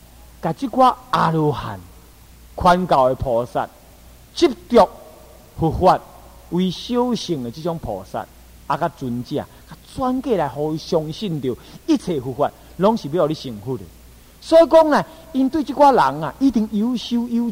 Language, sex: Chinese, male